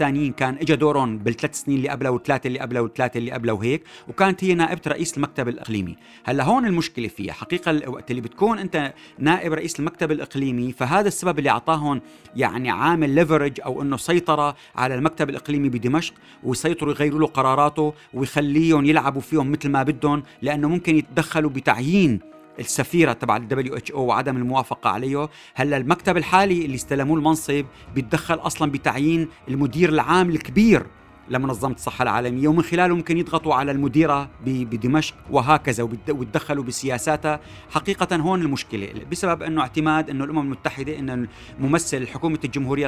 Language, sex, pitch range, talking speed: Arabic, male, 130-160 Hz, 150 wpm